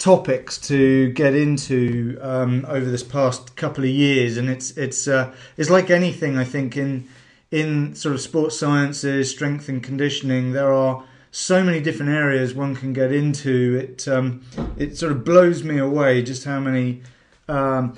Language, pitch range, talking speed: English, 130-150 Hz, 170 wpm